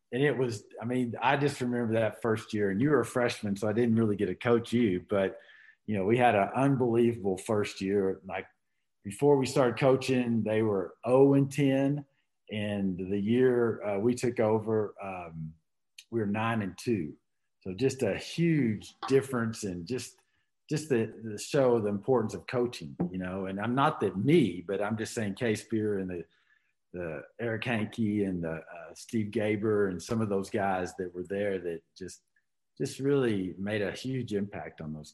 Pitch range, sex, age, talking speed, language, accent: 100-130 Hz, male, 50-69, 190 wpm, English, American